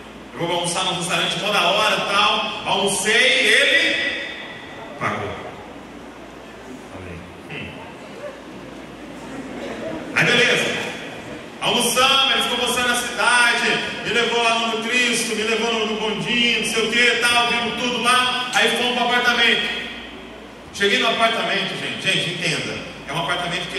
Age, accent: 40-59, Brazilian